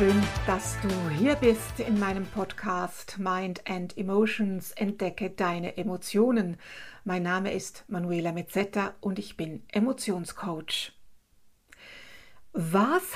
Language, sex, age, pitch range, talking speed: German, female, 60-79, 185-230 Hz, 110 wpm